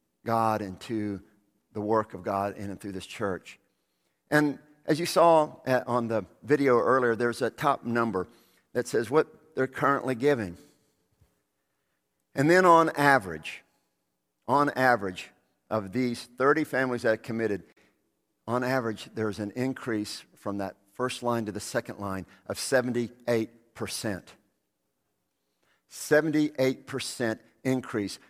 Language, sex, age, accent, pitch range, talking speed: English, male, 50-69, American, 100-130 Hz, 130 wpm